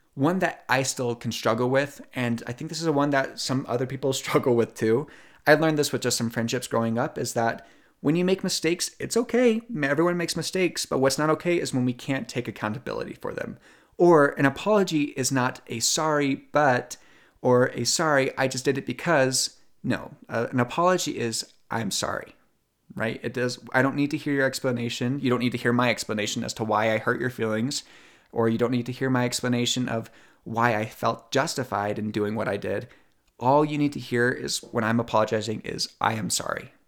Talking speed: 215 wpm